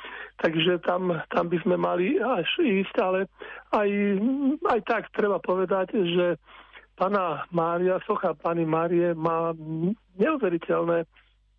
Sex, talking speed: male, 115 wpm